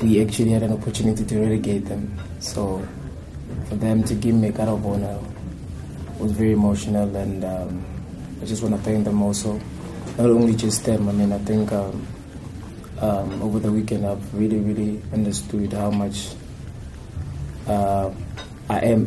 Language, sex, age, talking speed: English, male, 20-39, 165 wpm